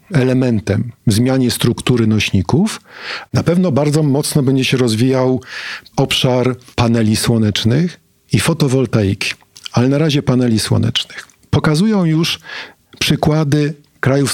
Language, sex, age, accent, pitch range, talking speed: Polish, male, 50-69, native, 115-145 Hz, 110 wpm